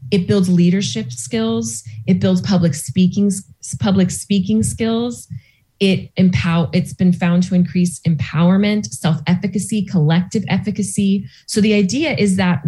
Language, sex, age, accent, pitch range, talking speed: English, female, 20-39, American, 130-190 Hz, 130 wpm